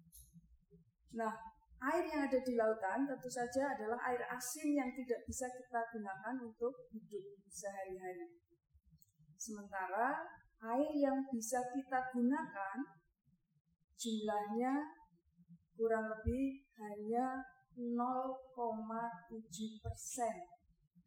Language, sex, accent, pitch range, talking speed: Indonesian, female, native, 195-255 Hz, 85 wpm